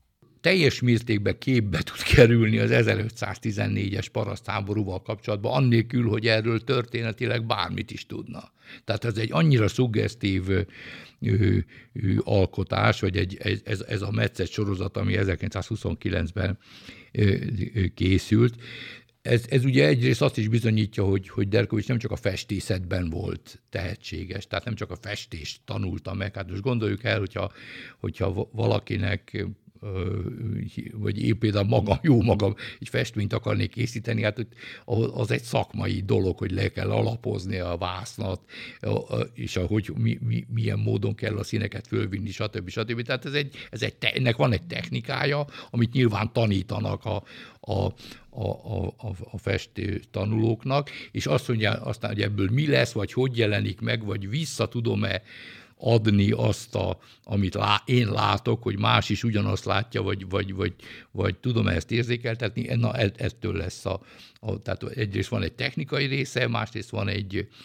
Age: 60-79